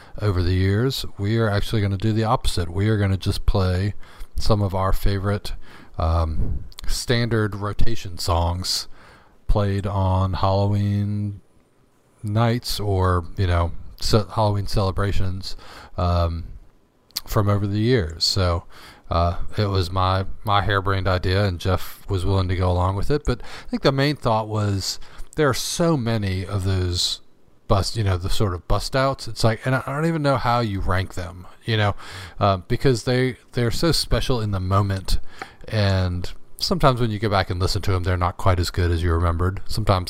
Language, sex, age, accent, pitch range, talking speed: English, male, 40-59, American, 95-110 Hz, 180 wpm